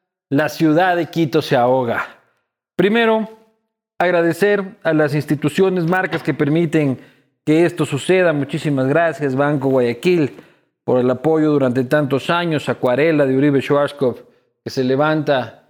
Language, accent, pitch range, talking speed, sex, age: Spanish, Mexican, 130-160 Hz, 130 wpm, male, 40-59